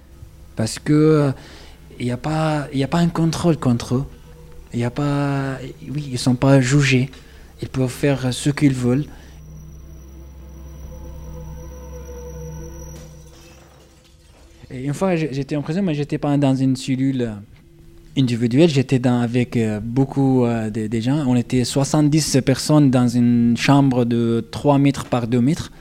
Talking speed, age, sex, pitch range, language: 135 wpm, 20-39, male, 110-145 Hz, French